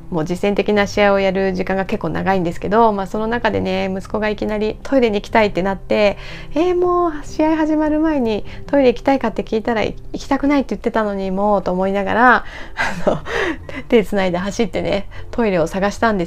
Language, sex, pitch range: Japanese, female, 185-240 Hz